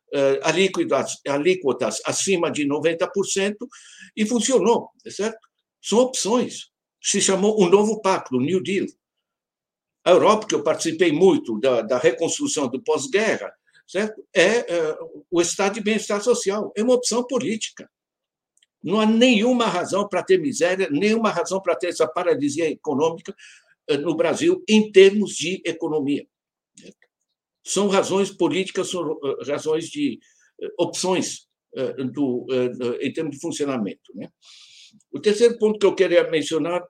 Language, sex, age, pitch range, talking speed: English, male, 60-79, 165-230 Hz, 140 wpm